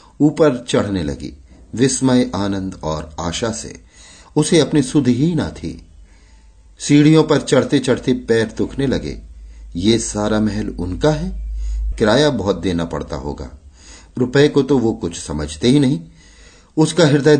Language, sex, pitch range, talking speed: Hindi, male, 80-125 Hz, 140 wpm